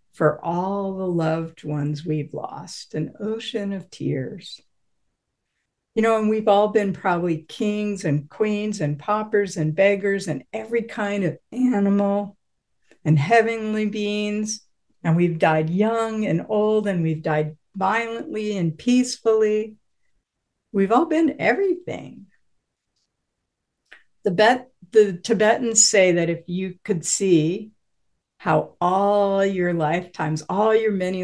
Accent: American